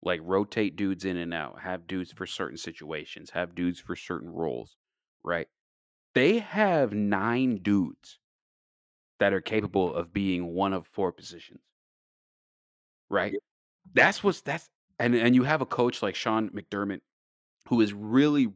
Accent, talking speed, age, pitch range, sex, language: American, 140 wpm, 30-49, 90-110 Hz, male, English